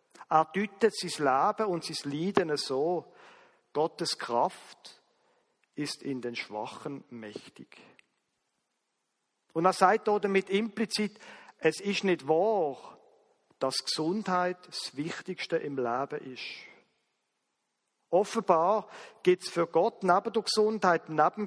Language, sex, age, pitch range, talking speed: German, male, 50-69, 145-200 Hz, 110 wpm